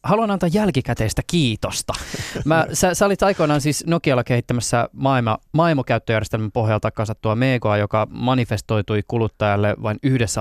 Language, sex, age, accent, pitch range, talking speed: Finnish, male, 20-39, native, 110-135 Hz, 120 wpm